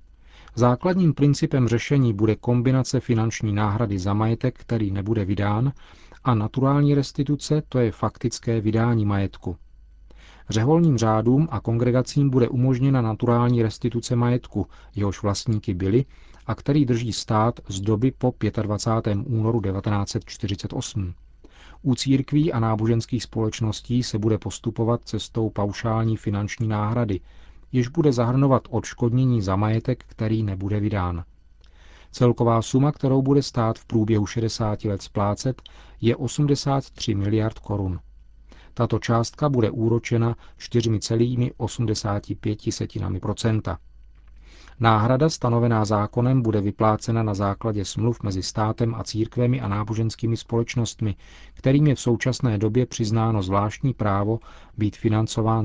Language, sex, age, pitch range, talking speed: Czech, male, 40-59, 100-120 Hz, 115 wpm